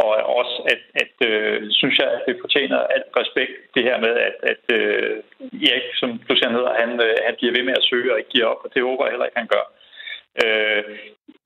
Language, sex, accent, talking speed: Danish, male, native, 225 wpm